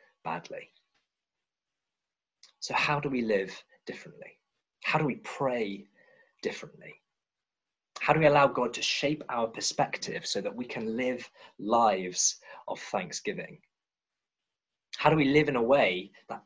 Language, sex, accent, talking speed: English, male, British, 135 wpm